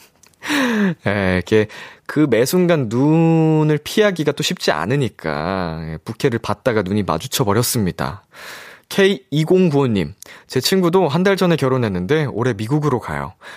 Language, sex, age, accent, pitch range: Korean, male, 20-39, native, 105-165 Hz